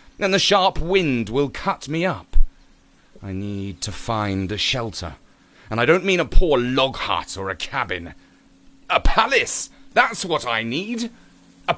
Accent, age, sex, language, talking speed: British, 40-59, male, English, 165 wpm